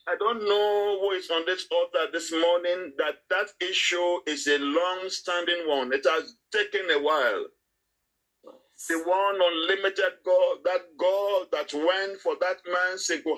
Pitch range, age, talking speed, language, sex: 155-260 Hz, 50-69, 155 wpm, English, male